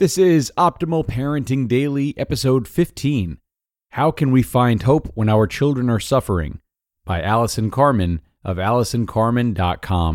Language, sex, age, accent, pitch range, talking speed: English, male, 30-49, American, 90-125 Hz, 130 wpm